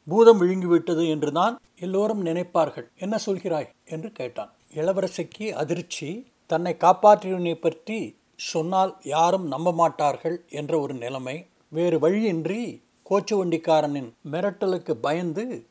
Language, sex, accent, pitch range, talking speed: Tamil, male, native, 160-200 Hz, 95 wpm